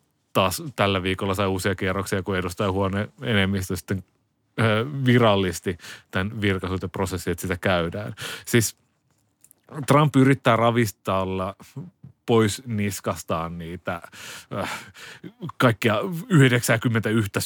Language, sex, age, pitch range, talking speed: Finnish, male, 30-49, 95-120 Hz, 95 wpm